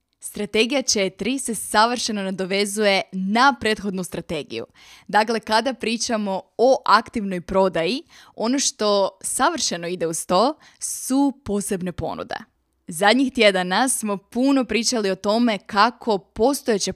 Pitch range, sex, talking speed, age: 190-230 Hz, female, 115 wpm, 20-39